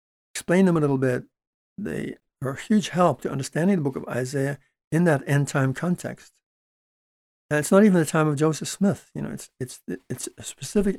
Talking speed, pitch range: 195 wpm, 130-160 Hz